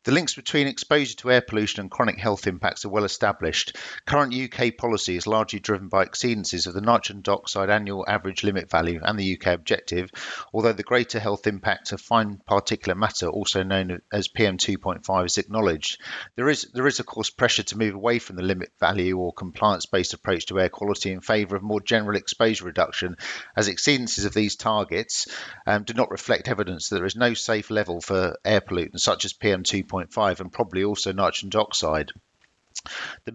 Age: 50-69